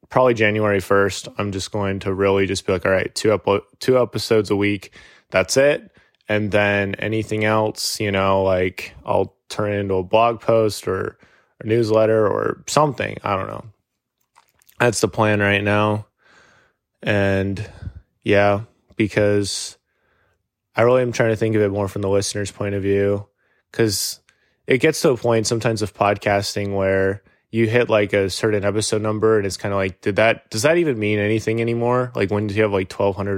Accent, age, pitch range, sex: American, 20-39, 100-115 Hz, male